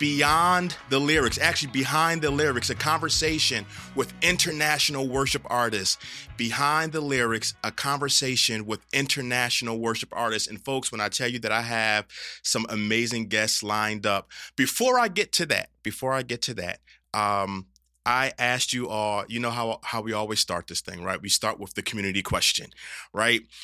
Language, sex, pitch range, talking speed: English, male, 105-135 Hz, 175 wpm